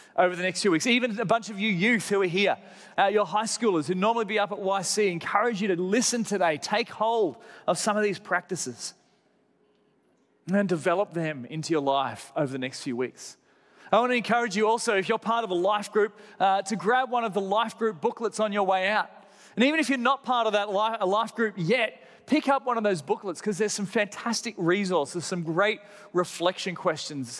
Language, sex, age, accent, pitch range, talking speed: English, male, 30-49, Australian, 160-220 Hz, 225 wpm